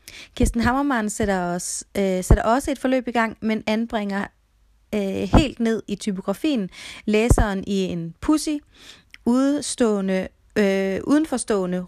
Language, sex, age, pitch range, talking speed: Swedish, female, 30-49, 195-240 Hz, 125 wpm